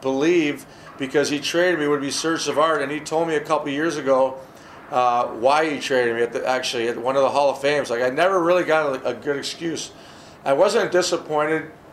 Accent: American